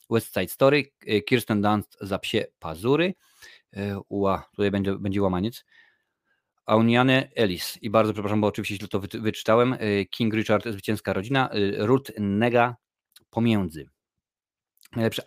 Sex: male